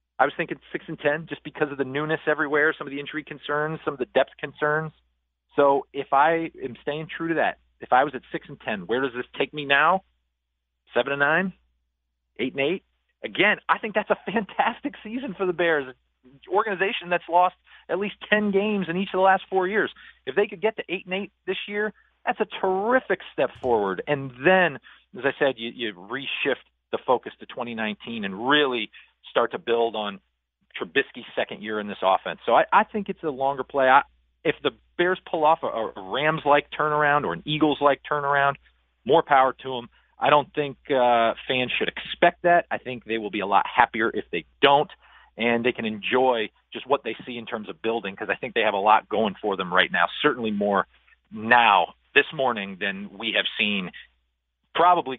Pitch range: 115-175 Hz